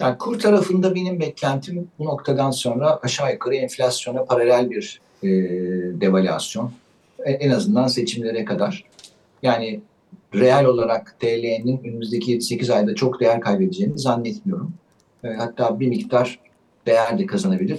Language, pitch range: Turkish, 115-185 Hz